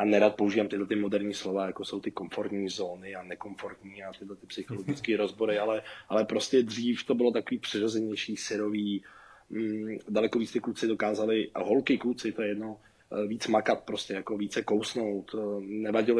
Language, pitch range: Czech, 105-135 Hz